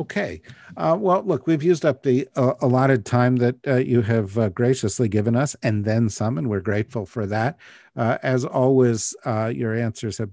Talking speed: 200 wpm